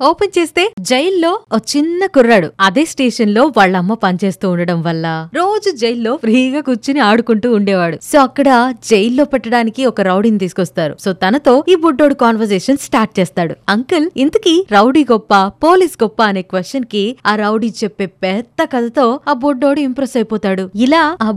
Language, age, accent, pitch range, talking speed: Telugu, 20-39, native, 200-270 Hz, 150 wpm